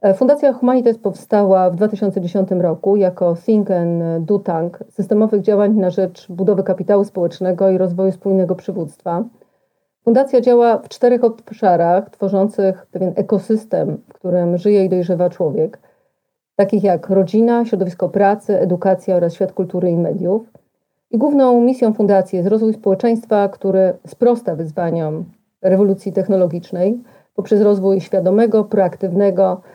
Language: Polish